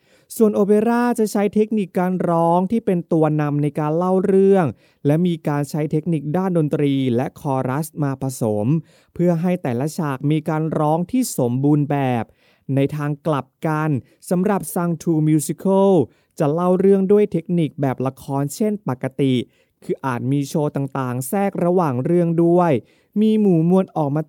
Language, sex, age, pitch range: Thai, male, 20-39, 135-180 Hz